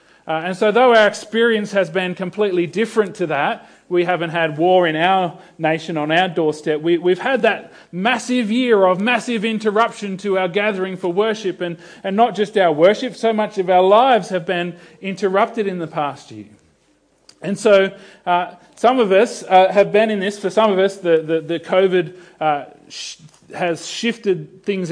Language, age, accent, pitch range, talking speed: English, 40-59, Australian, 160-210 Hz, 185 wpm